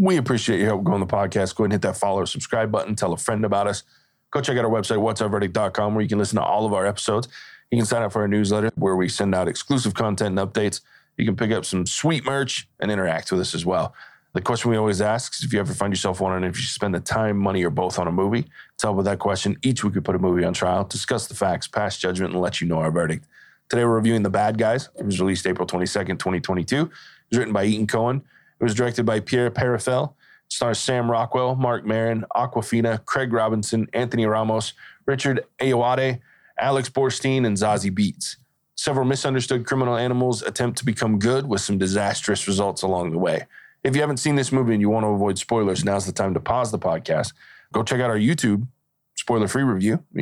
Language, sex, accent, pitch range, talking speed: English, male, American, 100-125 Hz, 235 wpm